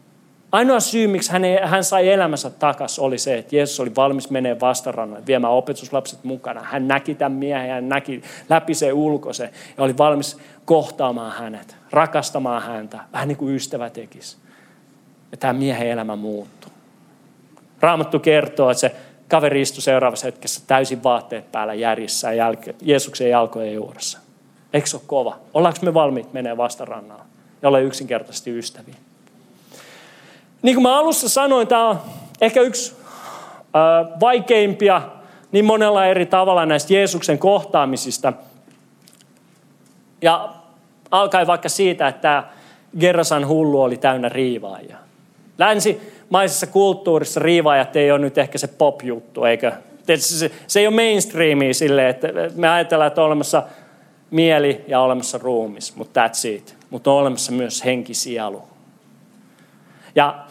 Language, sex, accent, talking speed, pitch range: Finnish, male, native, 135 wpm, 130-180 Hz